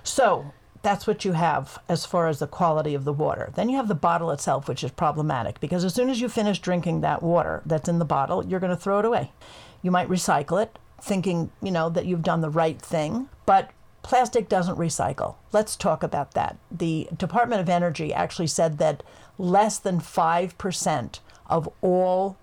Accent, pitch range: American, 160-190 Hz